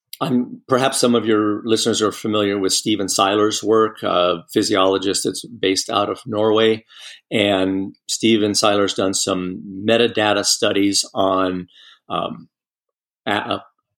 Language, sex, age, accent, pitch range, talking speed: English, male, 50-69, American, 100-115 Hz, 115 wpm